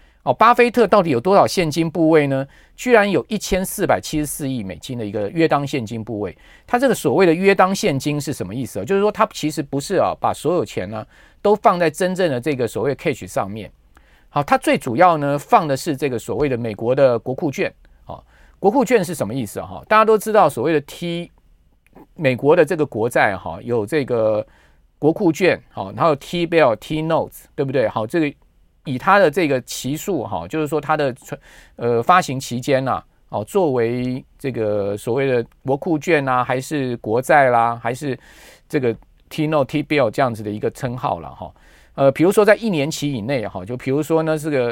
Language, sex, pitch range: Chinese, male, 125-180 Hz